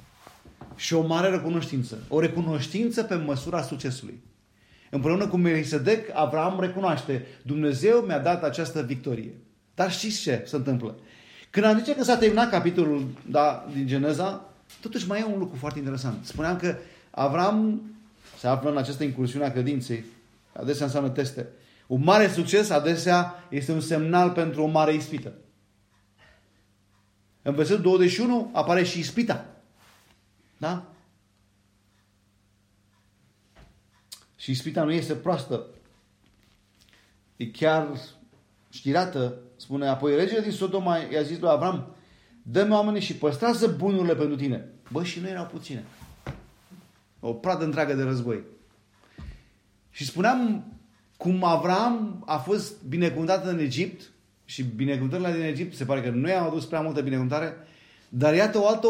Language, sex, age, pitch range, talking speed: Romanian, male, 40-59, 125-180 Hz, 135 wpm